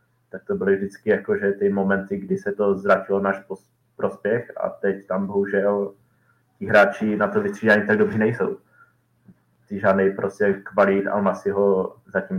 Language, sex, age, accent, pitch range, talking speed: Czech, male, 20-39, native, 100-120 Hz, 170 wpm